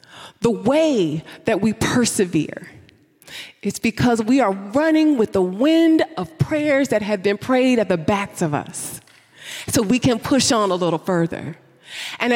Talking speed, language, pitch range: 160 wpm, English, 185-275 Hz